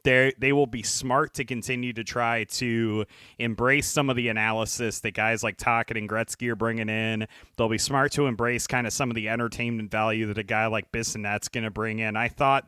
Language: English